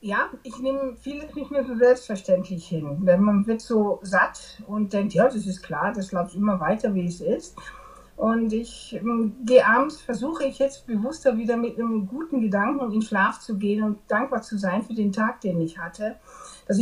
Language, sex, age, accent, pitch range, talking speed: German, female, 60-79, German, 195-250 Hz, 205 wpm